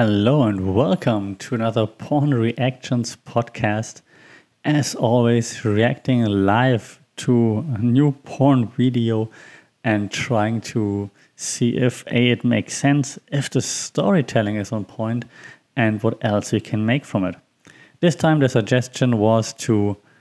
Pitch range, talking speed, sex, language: 110-130 Hz, 135 wpm, male, English